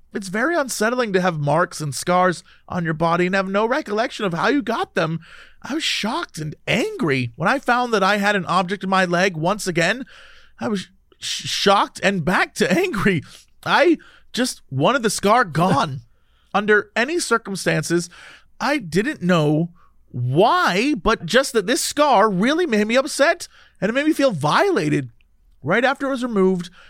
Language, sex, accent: English, male, American